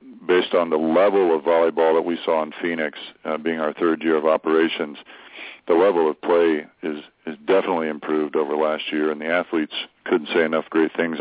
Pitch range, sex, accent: 75-80 Hz, male, American